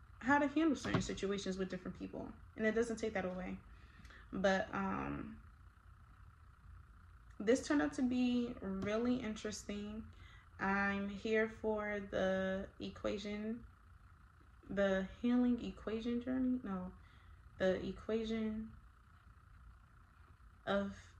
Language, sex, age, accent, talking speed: English, female, 20-39, American, 100 wpm